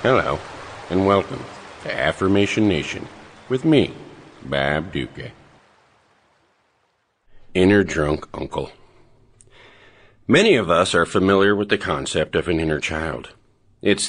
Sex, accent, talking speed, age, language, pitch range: male, American, 110 wpm, 50-69, English, 85-110 Hz